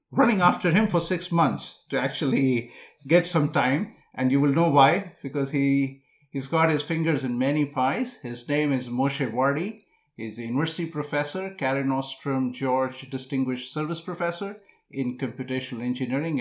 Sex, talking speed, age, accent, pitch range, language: male, 155 wpm, 50-69, Indian, 125-150 Hz, English